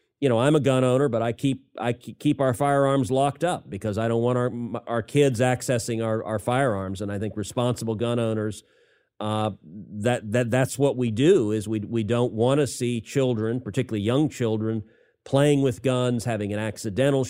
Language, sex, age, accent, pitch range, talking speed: English, male, 40-59, American, 110-135 Hz, 195 wpm